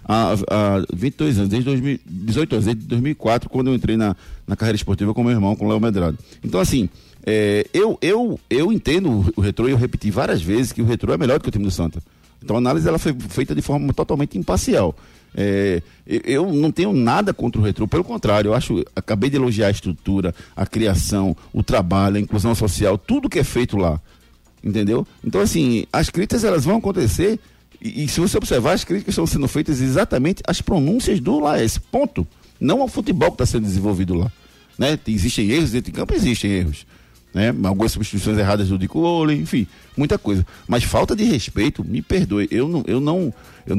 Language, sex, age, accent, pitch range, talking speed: Portuguese, male, 60-79, Brazilian, 100-130 Hz, 200 wpm